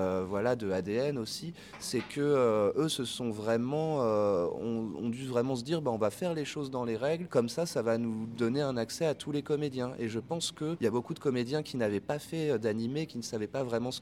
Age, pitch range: 30-49, 105-135 Hz